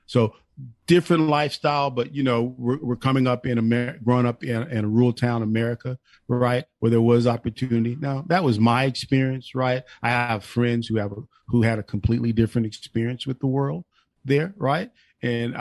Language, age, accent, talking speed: English, 40-59, American, 190 wpm